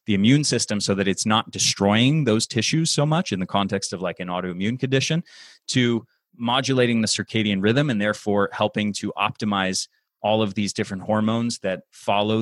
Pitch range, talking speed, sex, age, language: 100-130 Hz, 180 wpm, male, 30-49, English